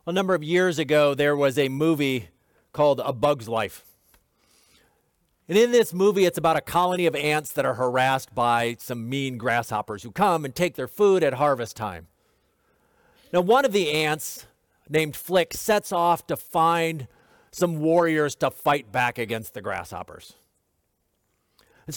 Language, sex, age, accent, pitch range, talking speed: English, male, 40-59, American, 140-195 Hz, 160 wpm